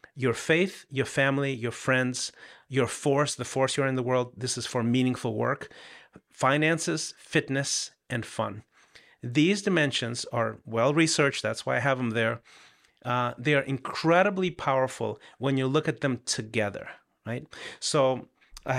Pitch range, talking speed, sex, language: 125-150 Hz, 155 wpm, male, English